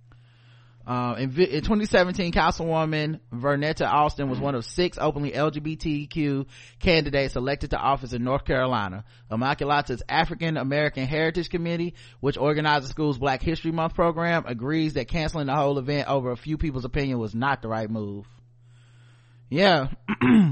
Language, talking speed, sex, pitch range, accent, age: English, 145 wpm, male, 120-155 Hz, American, 30-49